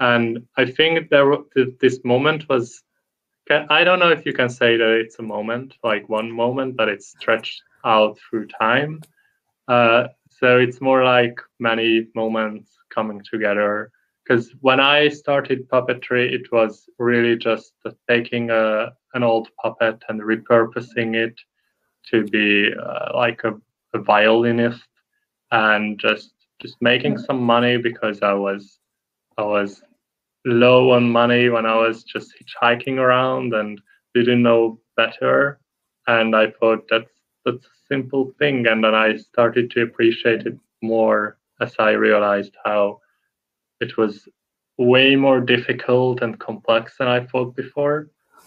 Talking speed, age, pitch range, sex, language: 140 wpm, 20-39, 115-130 Hz, male, English